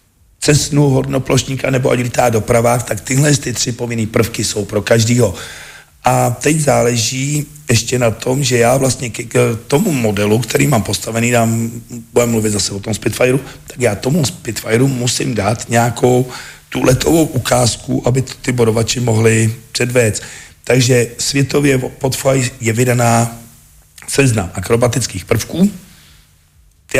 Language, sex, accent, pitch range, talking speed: Czech, male, native, 110-130 Hz, 140 wpm